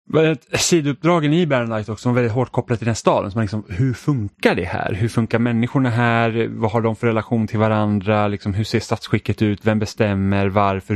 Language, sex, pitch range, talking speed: Swedish, male, 95-115 Hz, 225 wpm